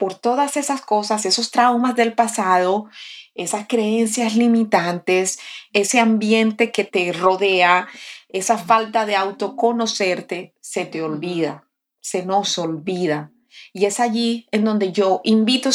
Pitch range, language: 195-235 Hz, Spanish